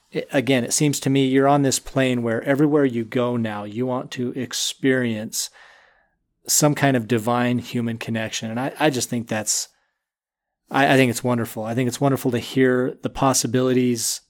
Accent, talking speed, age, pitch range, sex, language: American, 180 wpm, 30-49, 120-135 Hz, male, English